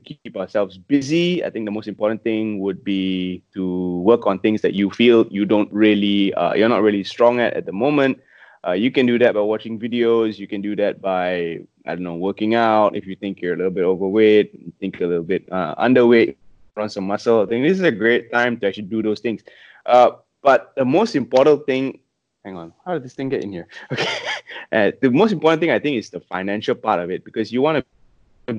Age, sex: 20-39, male